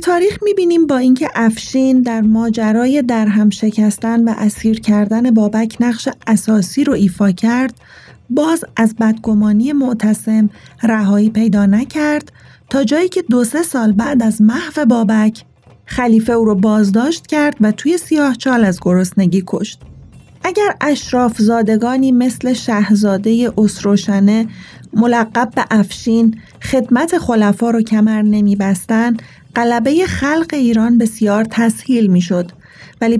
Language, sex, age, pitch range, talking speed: Arabic, female, 30-49, 210-245 Hz, 125 wpm